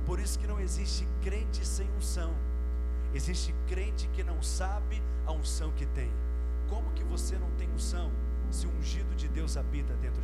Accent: Brazilian